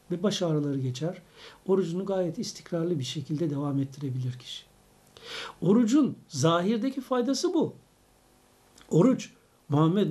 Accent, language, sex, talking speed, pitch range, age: native, Turkish, male, 105 wpm, 150-200 Hz, 60-79